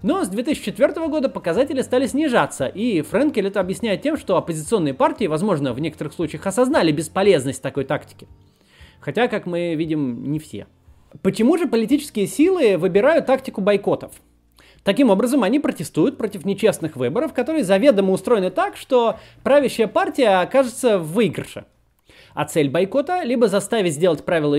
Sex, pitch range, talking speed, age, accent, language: male, 150-245 Hz, 150 wpm, 30-49, native, Russian